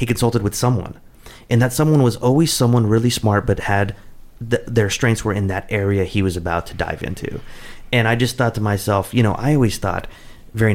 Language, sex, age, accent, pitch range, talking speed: English, male, 30-49, American, 95-120 Hz, 210 wpm